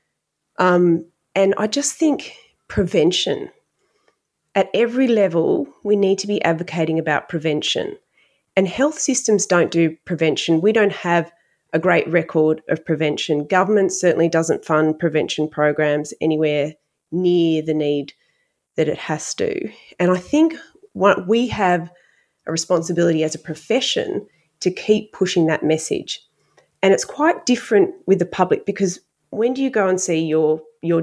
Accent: Australian